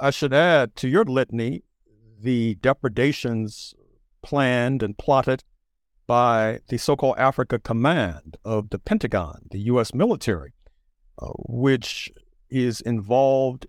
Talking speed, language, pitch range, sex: 115 wpm, English, 115-150 Hz, male